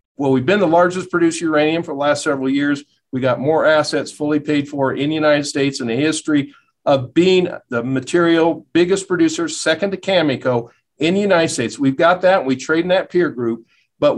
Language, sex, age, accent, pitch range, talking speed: English, male, 50-69, American, 140-185 Hz, 210 wpm